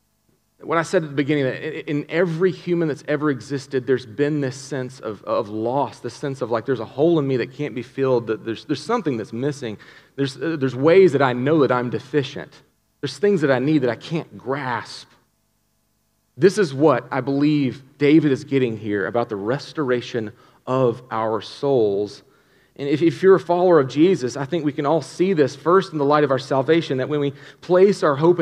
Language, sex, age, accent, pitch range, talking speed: English, male, 40-59, American, 130-170 Hz, 210 wpm